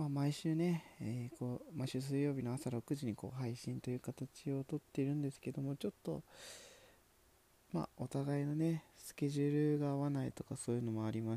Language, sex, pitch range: Japanese, male, 105-135 Hz